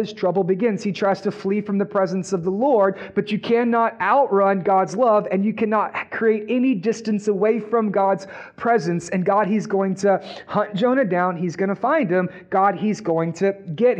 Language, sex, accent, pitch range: English, male, American, 185-230 Hz